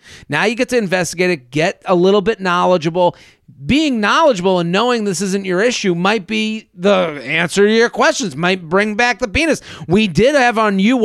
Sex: male